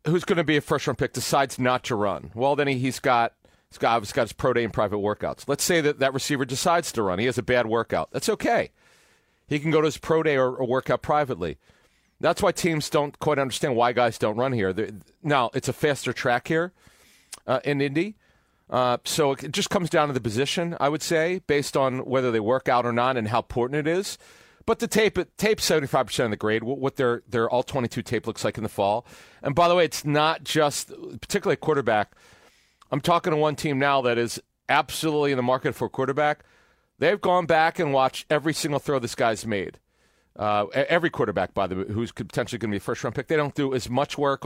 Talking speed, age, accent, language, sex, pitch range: 230 wpm, 40-59, American, English, male, 120-155 Hz